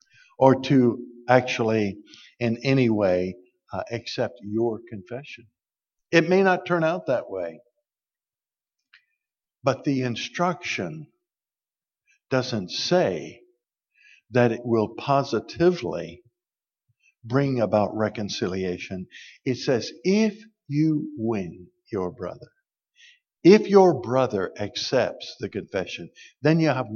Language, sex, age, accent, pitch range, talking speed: English, male, 60-79, American, 110-155 Hz, 100 wpm